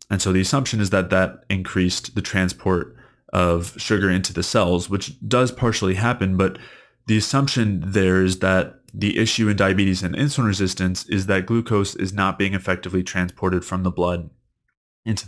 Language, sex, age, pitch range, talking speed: English, male, 20-39, 90-105 Hz, 175 wpm